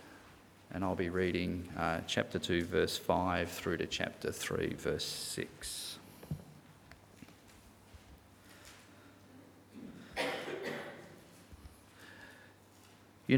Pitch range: 95-125 Hz